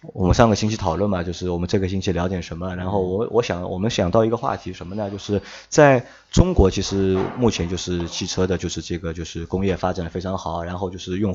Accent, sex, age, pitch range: native, male, 20-39, 90-105 Hz